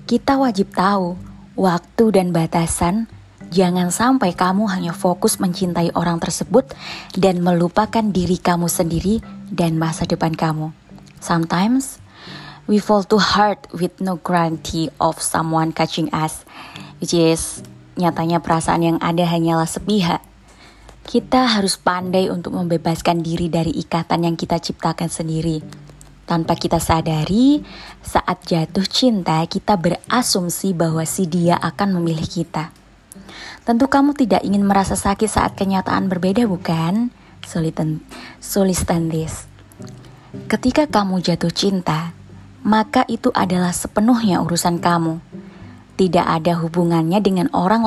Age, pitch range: 20-39, 165-200 Hz